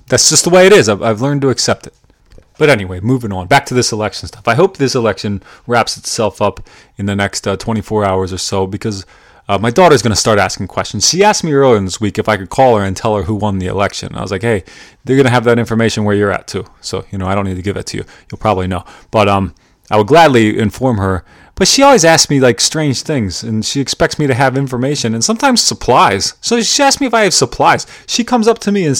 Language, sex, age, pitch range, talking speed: English, male, 30-49, 105-170 Hz, 265 wpm